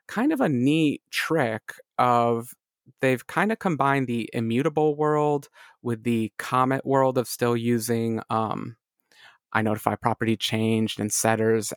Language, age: English, 30-49